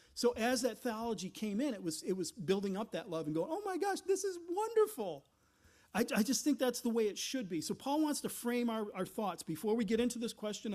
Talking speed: 255 wpm